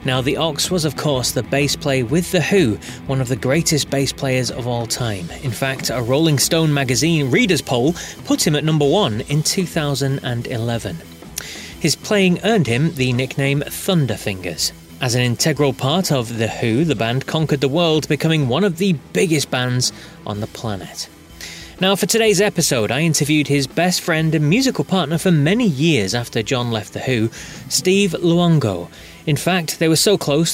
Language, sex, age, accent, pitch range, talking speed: English, male, 30-49, British, 125-165 Hz, 180 wpm